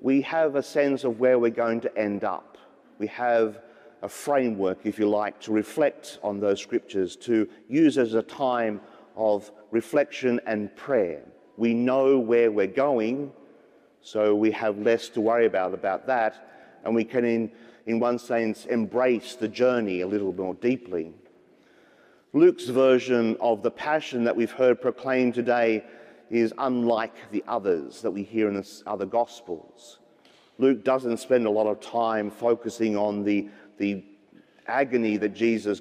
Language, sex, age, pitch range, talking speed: English, male, 40-59, 105-130 Hz, 160 wpm